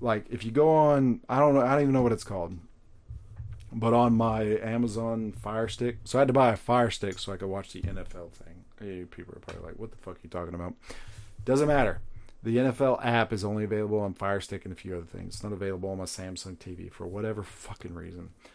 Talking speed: 245 wpm